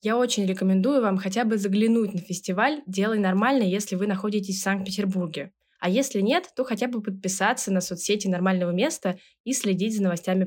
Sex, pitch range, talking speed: female, 190-250 Hz, 180 wpm